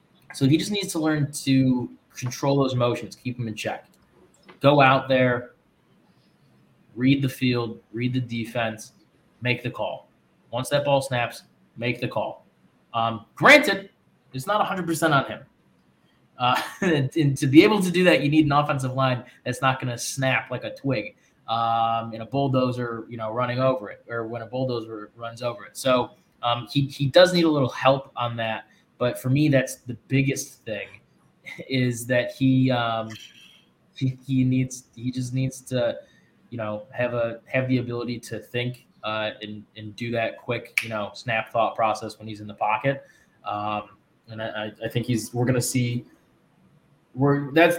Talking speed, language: 180 wpm, English